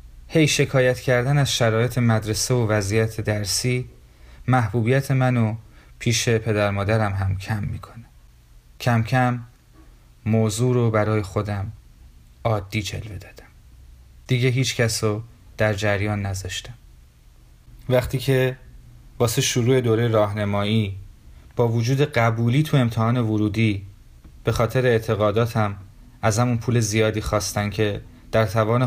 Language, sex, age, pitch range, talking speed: Persian, male, 30-49, 100-120 Hz, 115 wpm